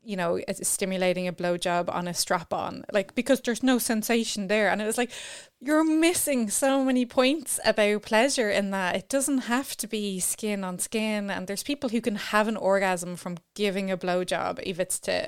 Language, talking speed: English, 200 wpm